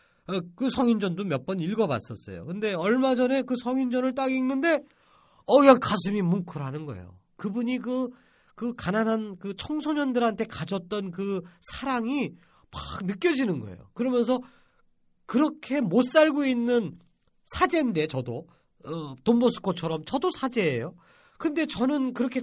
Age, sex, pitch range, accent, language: 40-59, male, 155-255 Hz, native, Korean